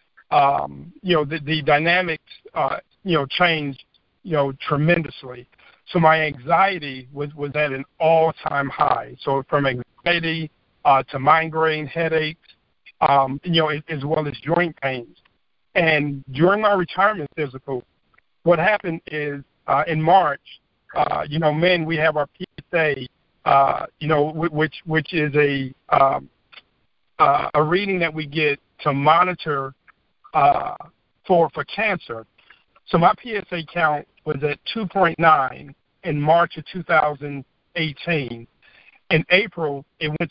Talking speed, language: 135 wpm, English